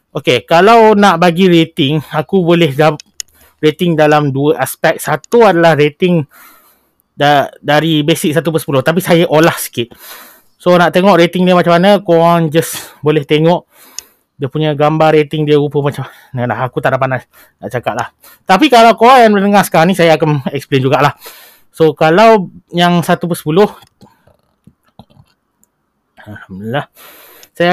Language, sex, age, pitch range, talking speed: Malay, male, 30-49, 150-200 Hz, 150 wpm